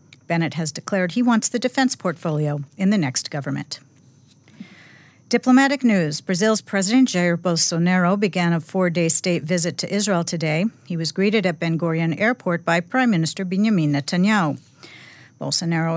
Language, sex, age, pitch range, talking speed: English, female, 50-69, 160-205 Hz, 145 wpm